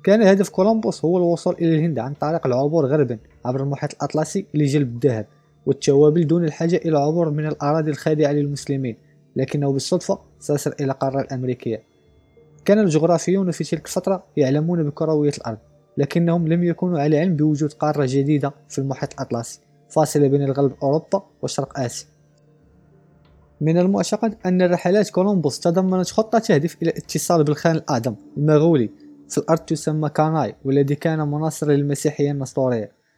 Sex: male